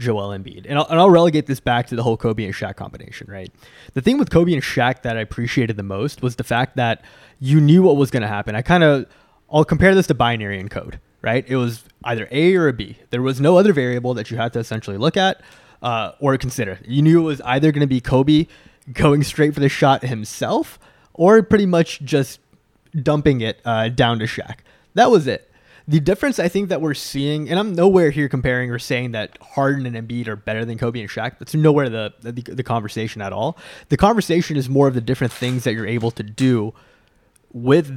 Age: 20-39